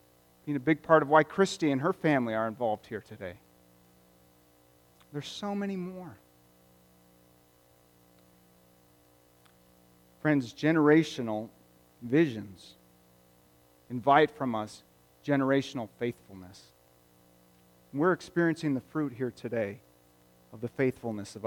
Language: English